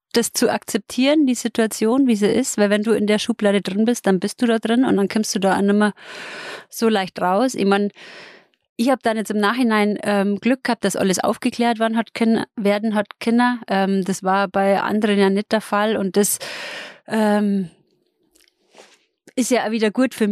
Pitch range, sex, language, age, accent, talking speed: 195-225 Hz, female, German, 30-49, German, 205 wpm